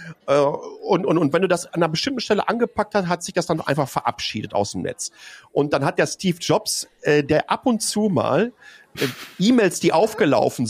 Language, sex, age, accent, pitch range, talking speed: German, male, 50-69, German, 155-220 Hz, 215 wpm